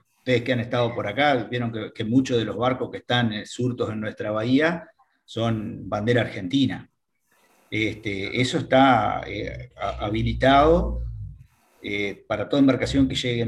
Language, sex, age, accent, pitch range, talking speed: Spanish, male, 40-59, Argentinian, 110-130 Hz, 145 wpm